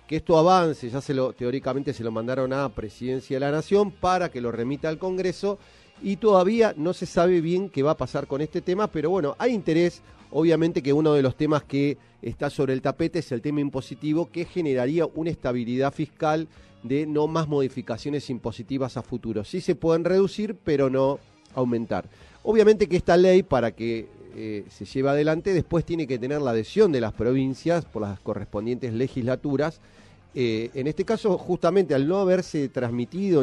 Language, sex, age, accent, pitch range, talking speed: Spanish, male, 40-59, Argentinian, 115-165 Hz, 185 wpm